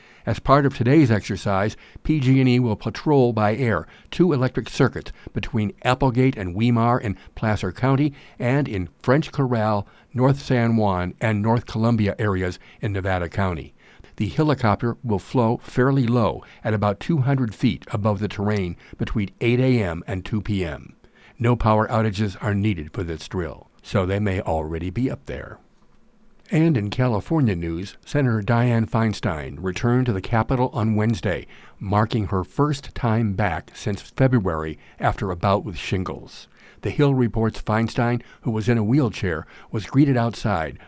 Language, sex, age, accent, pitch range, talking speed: English, male, 60-79, American, 100-125 Hz, 155 wpm